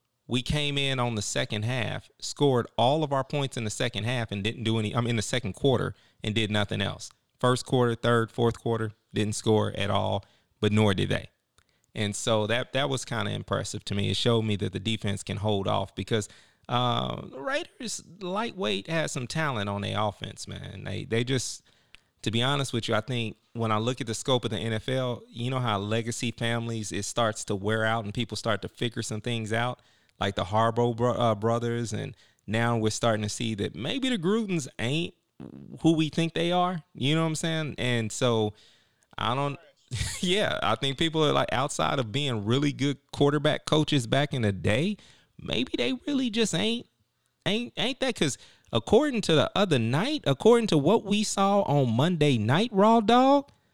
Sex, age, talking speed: male, 30-49, 205 wpm